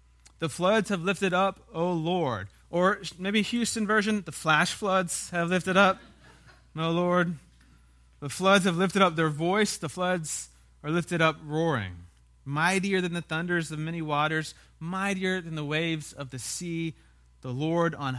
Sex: male